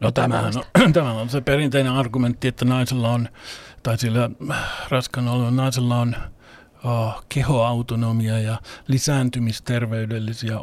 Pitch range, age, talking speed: 115-140 Hz, 60-79, 100 wpm